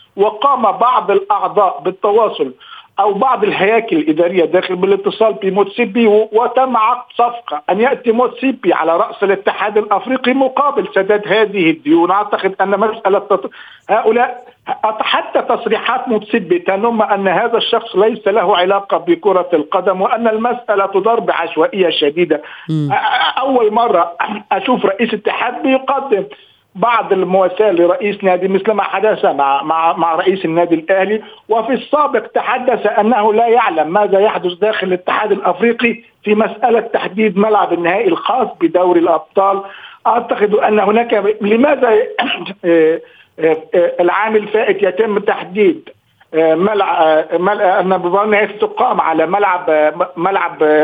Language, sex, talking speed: Arabic, male, 115 wpm